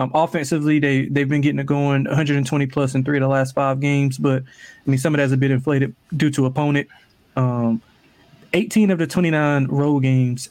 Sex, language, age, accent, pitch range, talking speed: male, English, 20-39, American, 135-165 Hz, 205 wpm